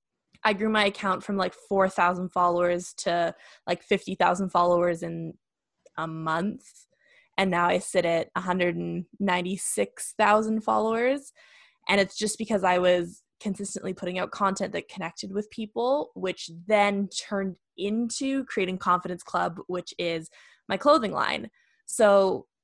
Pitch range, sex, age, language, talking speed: 175-210 Hz, female, 20-39, English, 130 wpm